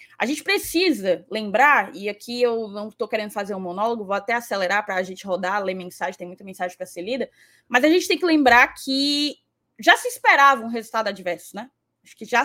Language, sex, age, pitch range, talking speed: Portuguese, female, 20-39, 210-260 Hz, 215 wpm